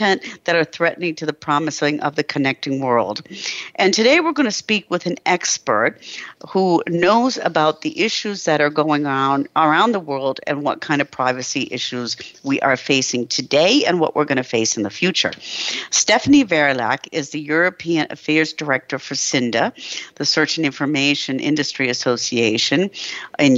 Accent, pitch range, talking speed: American, 140-175 Hz, 170 wpm